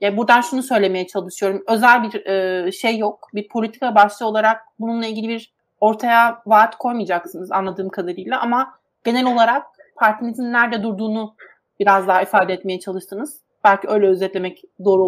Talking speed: 145 wpm